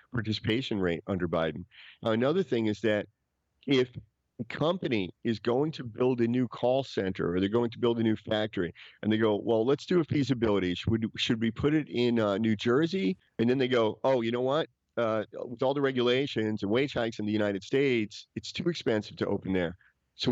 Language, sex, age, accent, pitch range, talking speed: English, male, 40-59, American, 95-120 Hz, 215 wpm